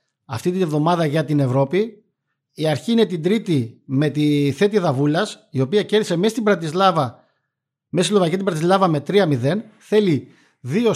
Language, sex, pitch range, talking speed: Greek, male, 150-195 Hz, 165 wpm